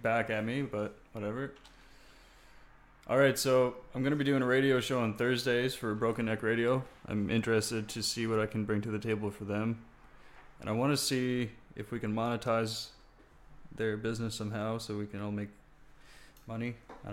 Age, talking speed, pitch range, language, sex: 20-39, 185 wpm, 110-125 Hz, English, male